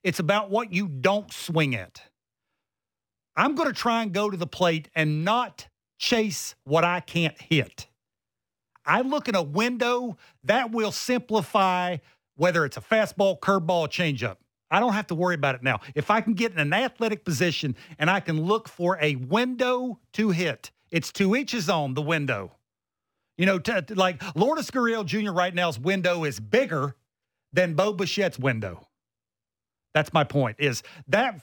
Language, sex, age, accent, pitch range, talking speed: English, male, 50-69, American, 150-205 Hz, 170 wpm